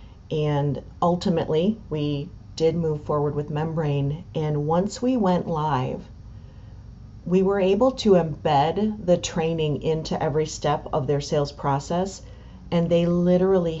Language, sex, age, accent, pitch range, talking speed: English, female, 40-59, American, 140-175 Hz, 130 wpm